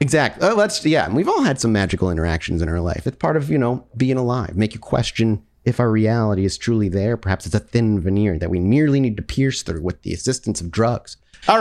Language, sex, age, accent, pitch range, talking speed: English, male, 30-49, American, 110-165 Hz, 245 wpm